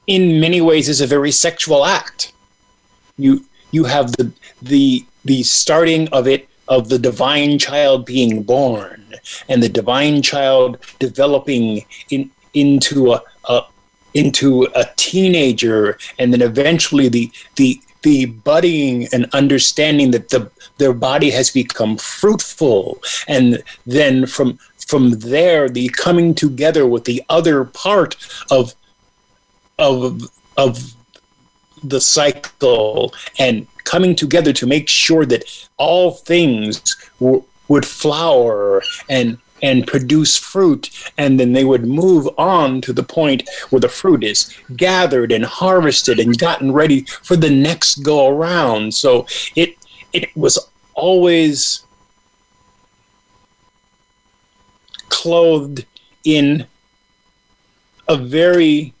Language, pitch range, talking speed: English, 125-160 Hz, 120 wpm